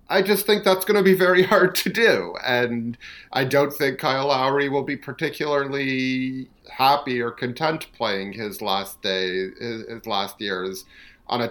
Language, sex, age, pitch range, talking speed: English, male, 40-59, 100-130 Hz, 165 wpm